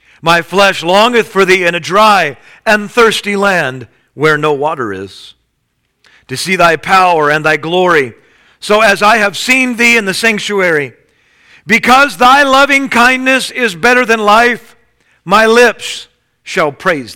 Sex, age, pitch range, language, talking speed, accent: male, 50-69, 150-205 Hz, English, 150 wpm, American